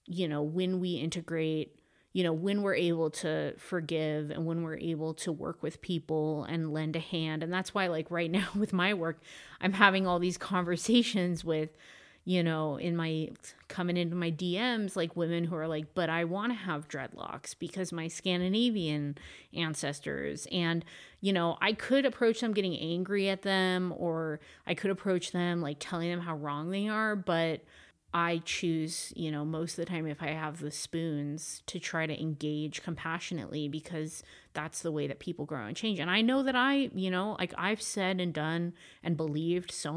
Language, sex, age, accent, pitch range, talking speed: English, female, 30-49, American, 155-185 Hz, 190 wpm